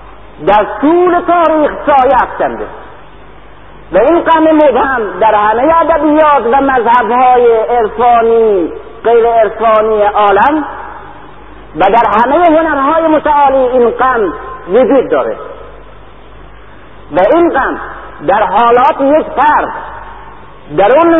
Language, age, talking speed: Persian, 50-69, 100 wpm